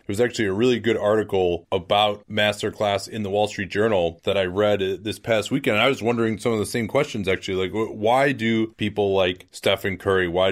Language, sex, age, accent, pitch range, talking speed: English, male, 30-49, American, 95-115 Hz, 220 wpm